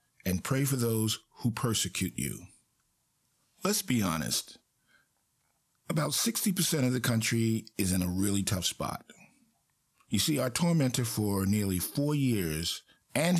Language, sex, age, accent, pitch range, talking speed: English, male, 50-69, American, 105-130 Hz, 135 wpm